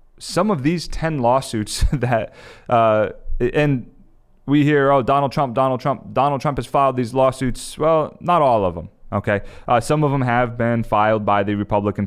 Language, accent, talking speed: English, American, 185 wpm